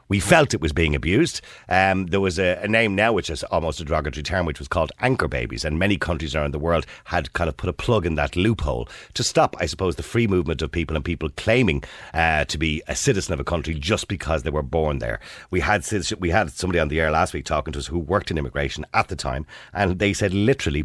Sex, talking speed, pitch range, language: male, 255 wpm, 75-95 Hz, English